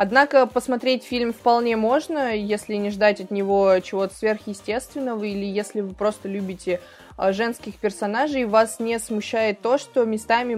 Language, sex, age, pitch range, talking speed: Russian, female, 20-39, 200-230 Hz, 140 wpm